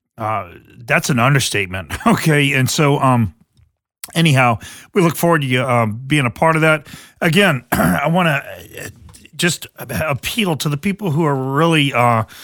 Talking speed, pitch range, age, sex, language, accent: 160 wpm, 125-145 Hz, 40-59, male, English, American